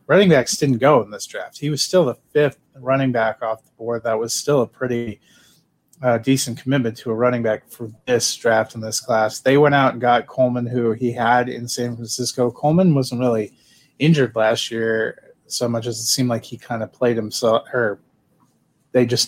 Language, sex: English, male